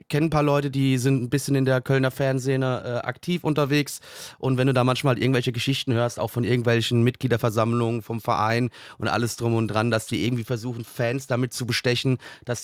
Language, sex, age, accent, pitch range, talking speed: German, male, 30-49, German, 125-155 Hz, 215 wpm